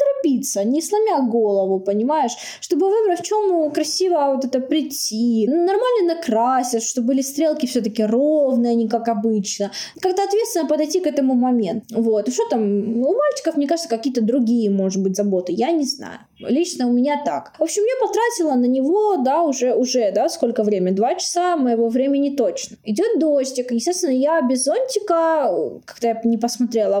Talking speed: 170 wpm